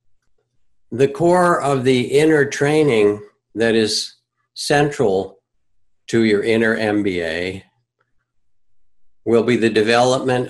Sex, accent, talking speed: male, American, 95 wpm